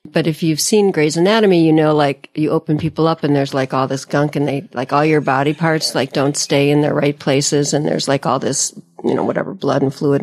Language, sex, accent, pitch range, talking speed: English, female, American, 145-180 Hz, 260 wpm